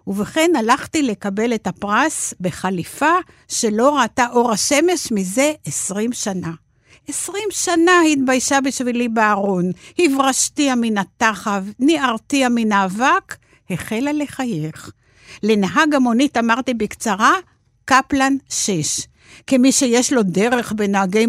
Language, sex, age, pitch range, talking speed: Hebrew, female, 60-79, 200-265 Hz, 105 wpm